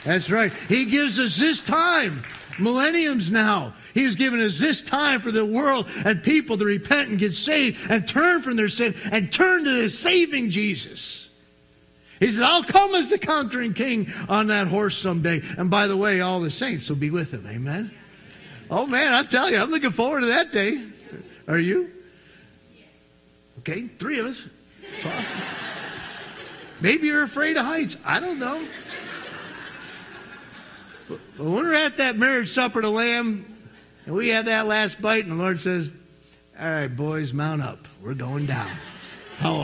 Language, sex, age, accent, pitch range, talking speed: English, male, 50-69, American, 170-260 Hz, 175 wpm